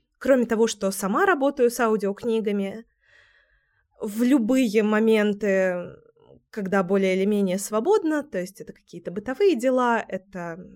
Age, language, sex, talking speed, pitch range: 20-39, Russian, female, 125 wpm, 195-255 Hz